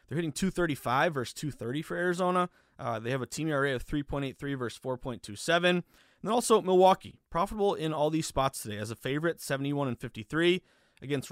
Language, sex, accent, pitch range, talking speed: English, male, American, 125-165 Hz, 180 wpm